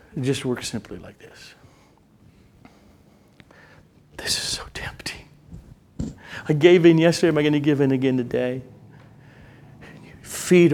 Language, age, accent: English, 40-59, American